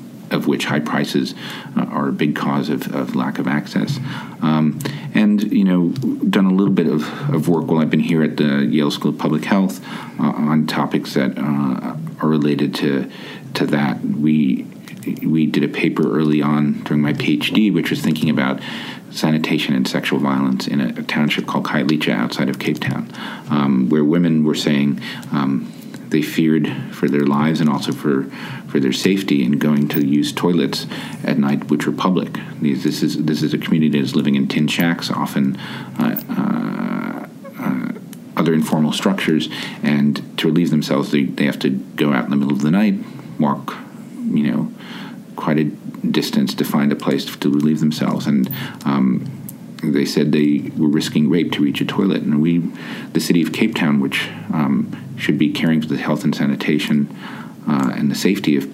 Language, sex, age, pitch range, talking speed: English, male, 40-59, 75-85 Hz, 185 wpm